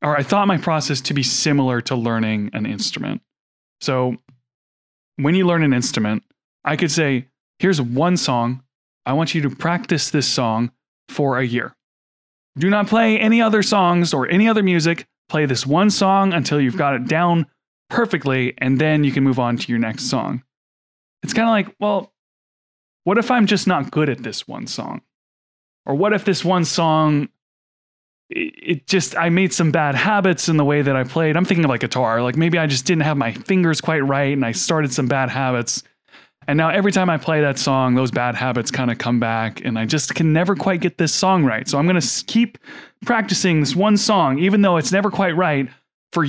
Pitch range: 130-185 Hz